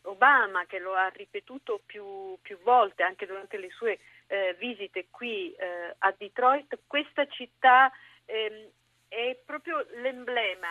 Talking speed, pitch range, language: 135 wpm, 205-270 Hz, Italian